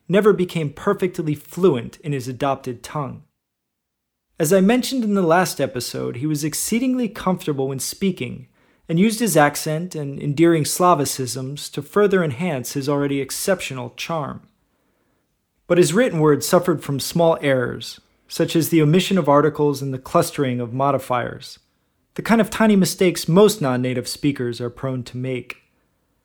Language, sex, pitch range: English, male, 135-180 Hz